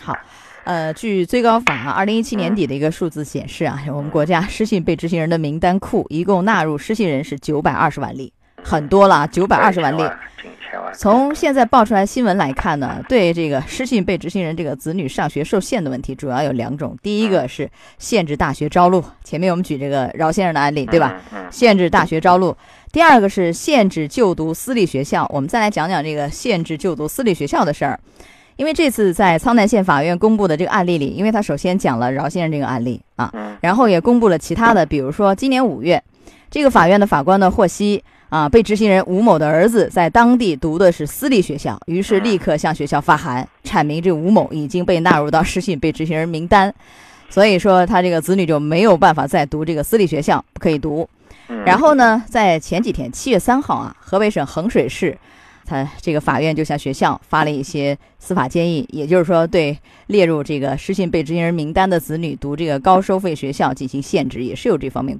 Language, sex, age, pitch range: Chinese, female, 20-39, 150-200 Hz